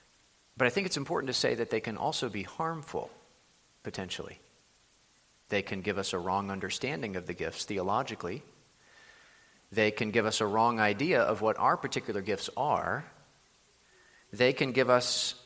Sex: male